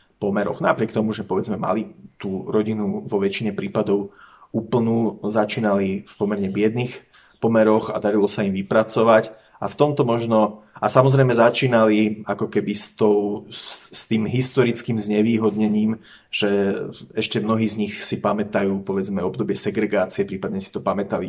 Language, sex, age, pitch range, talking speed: Slovak, male, 30-49, 105-115 Hz, 145 wpm